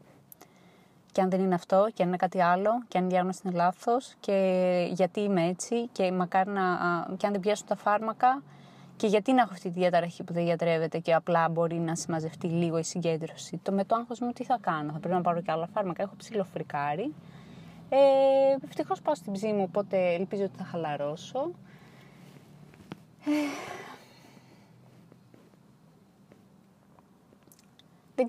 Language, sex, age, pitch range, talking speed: Greek, female, 20-39, 175-210 Hz, 155 wpm